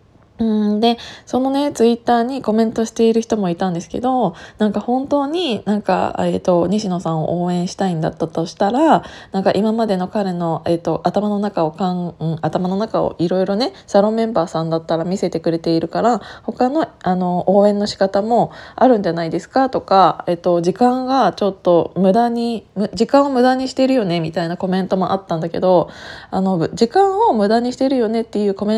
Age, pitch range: 20-39, 180-240 Hz